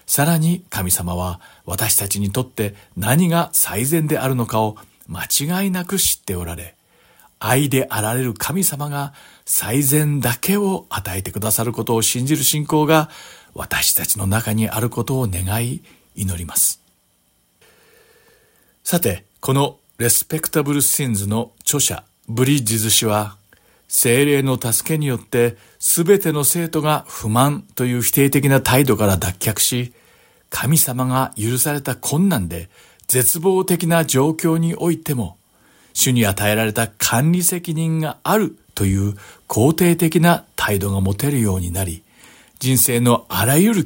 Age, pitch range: 50-69, 105-150 Hz